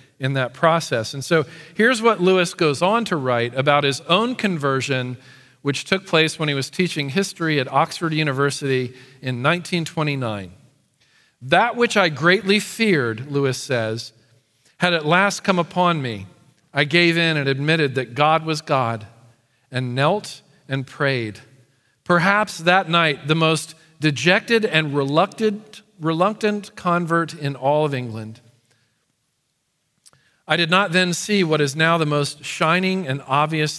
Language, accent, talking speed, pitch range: English, American, 145 wpm, 135-180 Hz